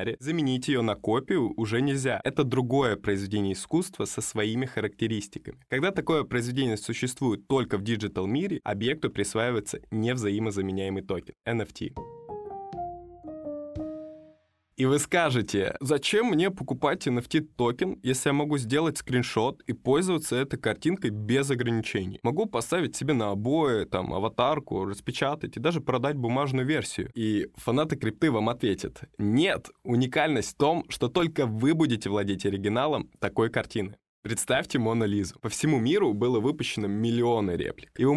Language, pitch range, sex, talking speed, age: Russian, 110-150 Hz, male, 135 wpm, 20-39